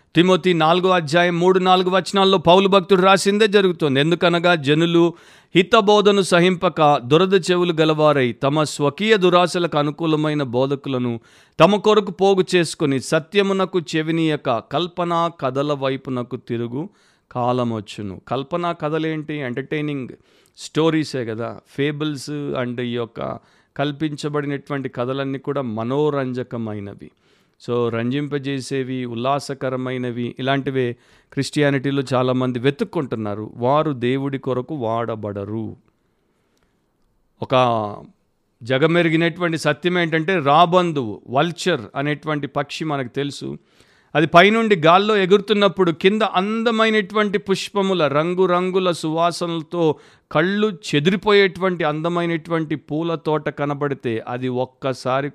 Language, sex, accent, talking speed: Telugu, male, native, 90 wpm